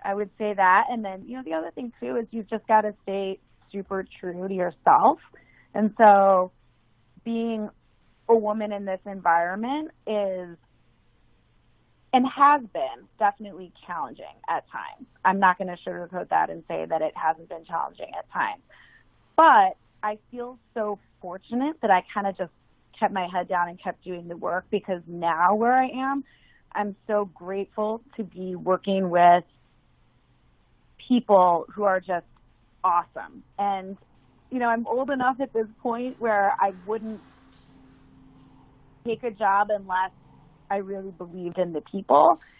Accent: American